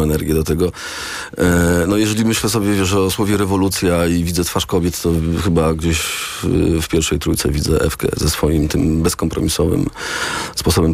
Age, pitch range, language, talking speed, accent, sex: 40-59, 80-95 Hz, Polish, 170 wpm, native, male